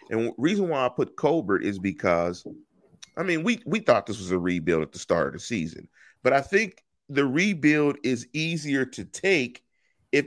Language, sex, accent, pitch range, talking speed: English, male, American, 95-140 Hz, 200 wpm